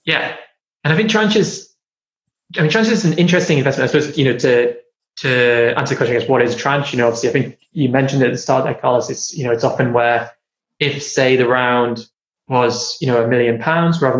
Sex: male